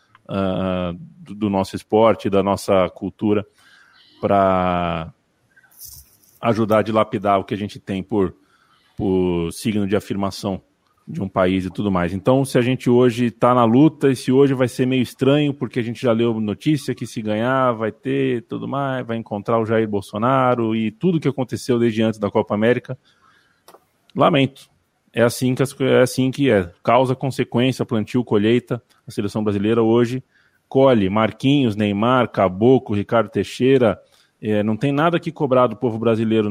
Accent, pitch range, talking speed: Brazilian, 105-130 Hz, 170 wpm